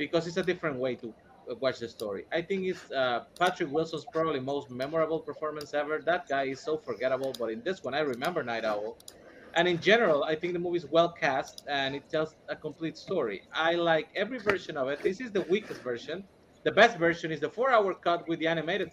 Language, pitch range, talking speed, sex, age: English, 135-185 Hz, 225 wpm, male, 30-49